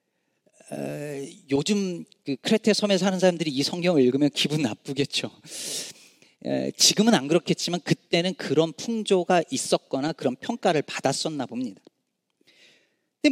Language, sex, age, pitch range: Korean, male, 40-59, 145-205 Hz